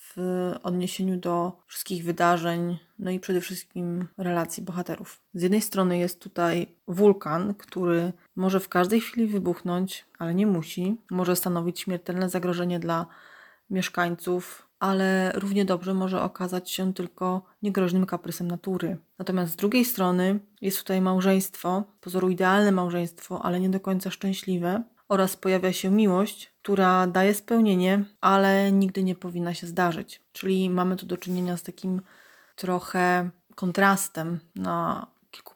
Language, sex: Polish, female